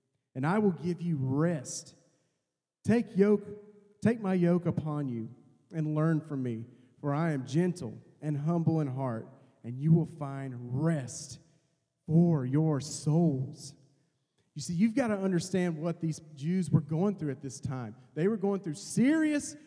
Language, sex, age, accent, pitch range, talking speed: English, male, 30-49, American, 155-245 Hz, 160 wpm